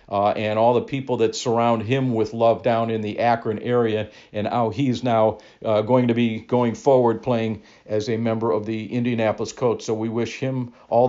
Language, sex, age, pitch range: English, male, 50-69, 110-140 Hz